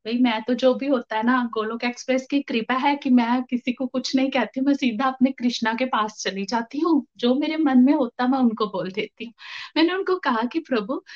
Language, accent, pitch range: Hindi, native, 235-315 Hz